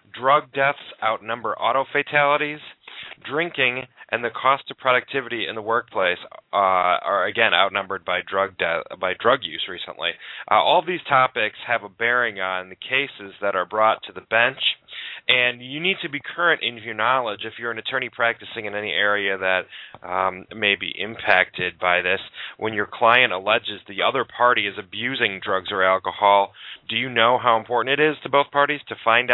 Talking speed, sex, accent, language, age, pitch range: 180 wpm, male, American, English, 30-49, 105-140 Hz